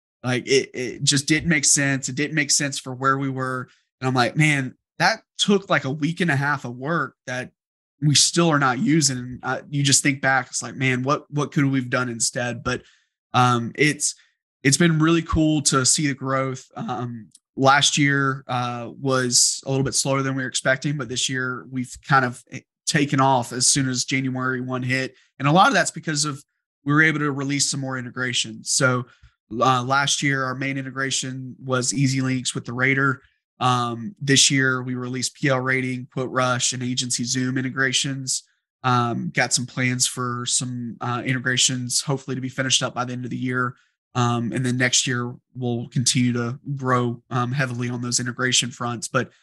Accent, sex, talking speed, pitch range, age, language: American, male, 200 wpm, 125-140 Hz, 20-39, English